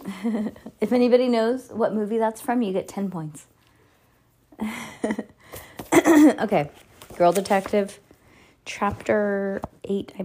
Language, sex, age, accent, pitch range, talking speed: English, female, 20-39, American, 155-225 Hz, 100 wpm